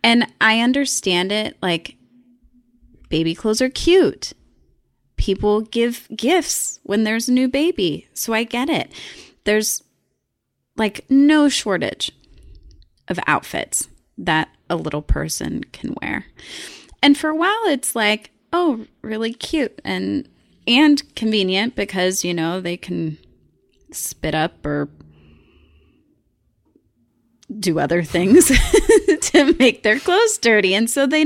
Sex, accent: female, American